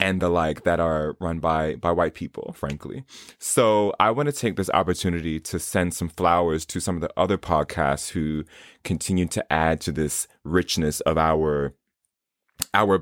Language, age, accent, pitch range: English, 20-39, American, 85-110 Hz